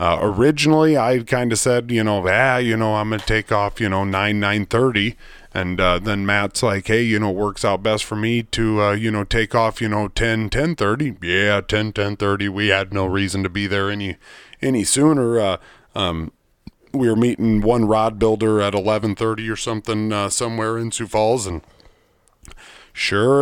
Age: 30-49